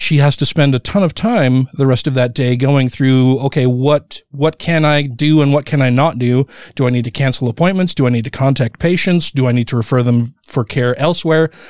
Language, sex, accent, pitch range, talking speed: English, male, American, 135-175 Hz, 245 wpm